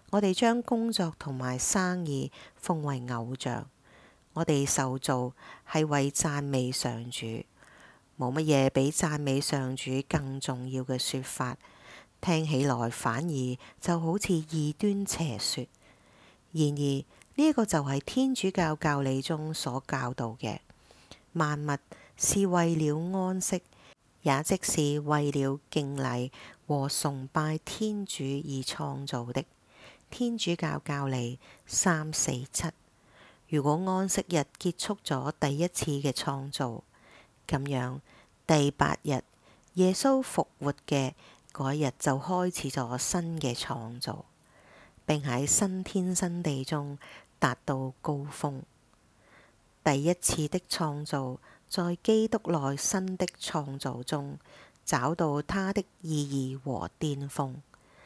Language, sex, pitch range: English, female, 130-165 Hz